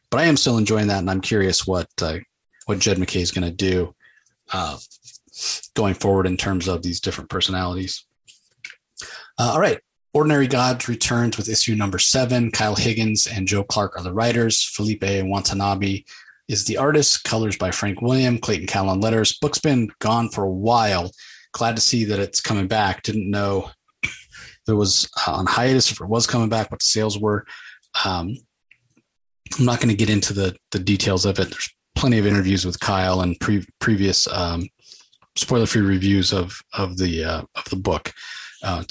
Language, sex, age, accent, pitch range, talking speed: English, male, 30-49, American, 95-115 Hz, 180 wpm